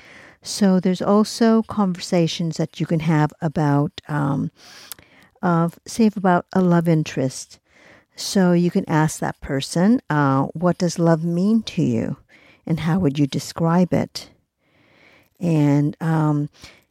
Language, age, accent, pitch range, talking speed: English, 50-69, American, 155-195 Hz, 130 wpm